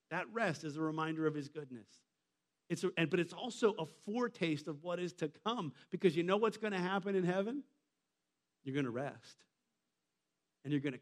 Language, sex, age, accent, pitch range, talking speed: English, male, 40-59, American, 135-180 Hz, 205 wpm